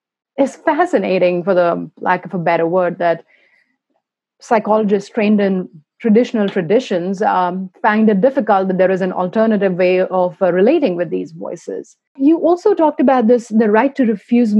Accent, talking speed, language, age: Indian, 165 wpm, English, 30-49